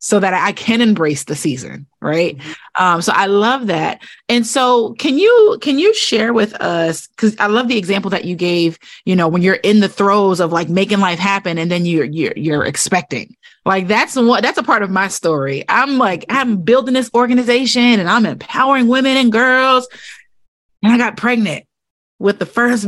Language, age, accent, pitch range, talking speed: English, 30-49, American, 170-240 Hz, 200 wpm